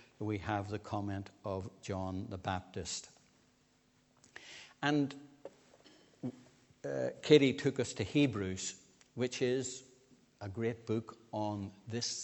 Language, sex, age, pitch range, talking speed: English, male, 60-79, 105-140 Hz, 110 wpm